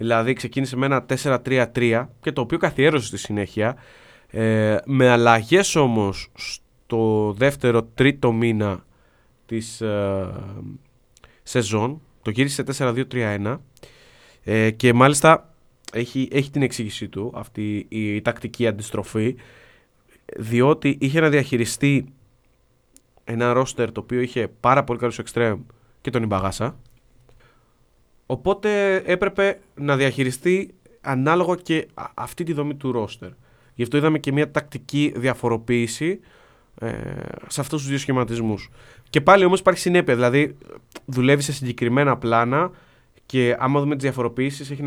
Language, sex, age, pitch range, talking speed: Greek, male, 20-39, 115-145 Hz, 120 wpm